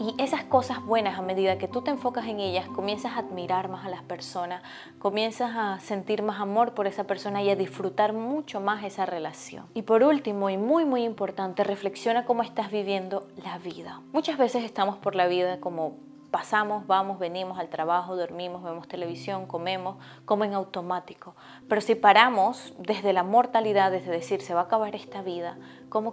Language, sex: Spanish, female